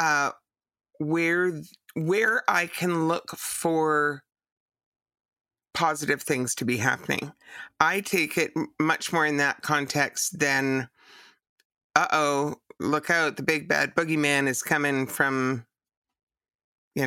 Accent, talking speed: American, 115 wpm